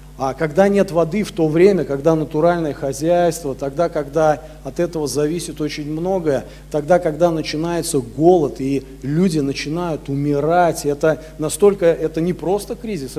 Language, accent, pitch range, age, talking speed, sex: Russian, native, 150-180 Hz, 40-59, 140 wpm, male